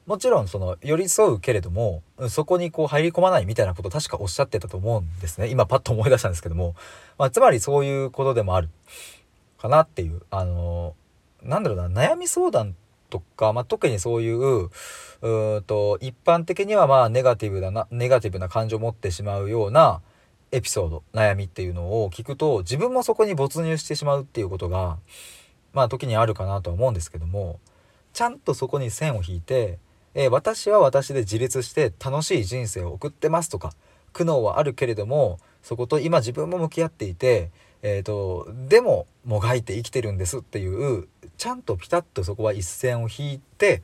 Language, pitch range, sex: Japanese, 95-135 Hz, male